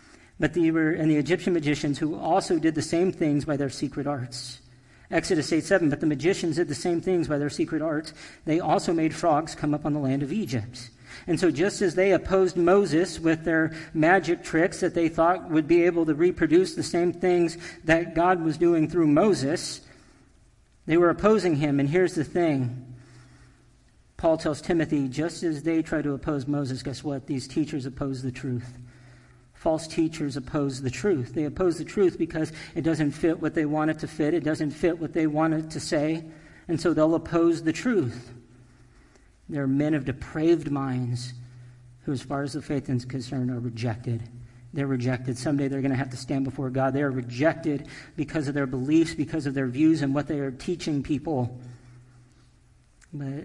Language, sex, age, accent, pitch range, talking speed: English, male, 50-69, American, 130-165 Hz, 190 wpm